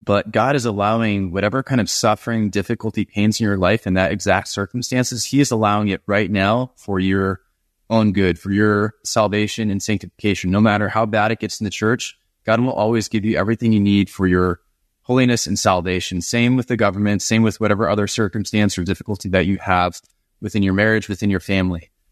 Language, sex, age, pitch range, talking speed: English, male, 20-39, 95-110 Hz, 200 wpm